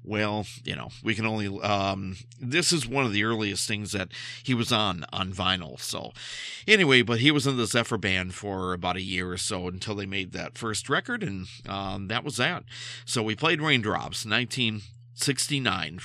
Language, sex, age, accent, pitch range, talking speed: English, male, 50-69, American, 100-125 Hz, 190 wpm